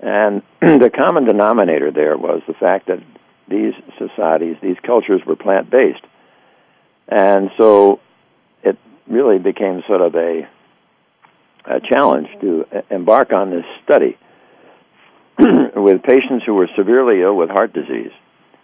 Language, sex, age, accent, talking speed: English, male, 60-79, American, 125 wpm